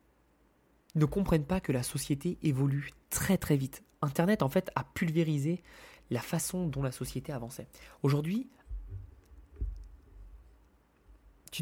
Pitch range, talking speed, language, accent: 130-180 Hz, 120 wpm, French, French